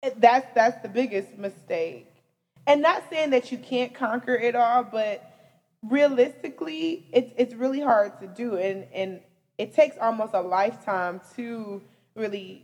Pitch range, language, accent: 185-240 Hz, English, American